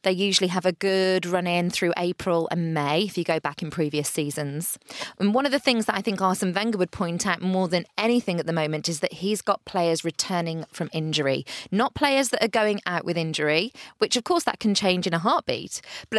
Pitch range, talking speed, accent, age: 165-210 Hz, 230 wpm, British, 20-39